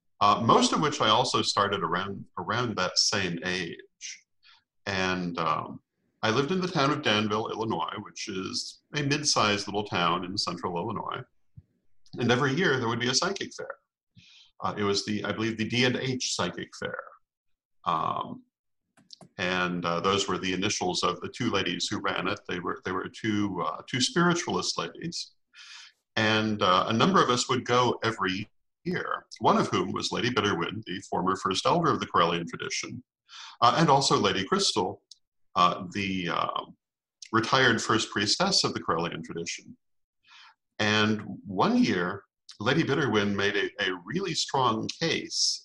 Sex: male